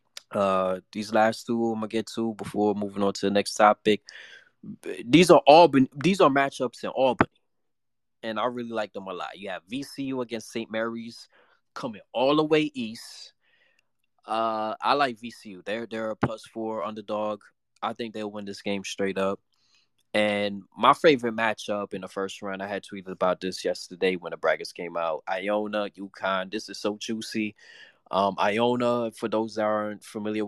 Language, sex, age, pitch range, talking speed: English, male, 20-39, 100-120 Hz, 180 wpm